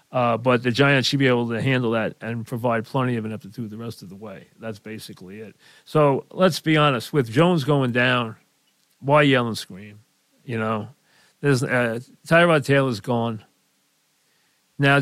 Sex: male